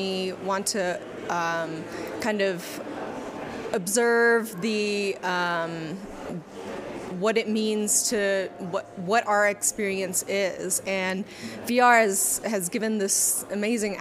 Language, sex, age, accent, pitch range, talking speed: English, female, 20-39, American, 180-210 Hz, 105 wpm